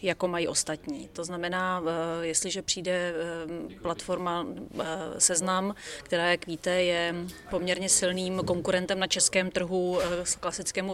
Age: 30-49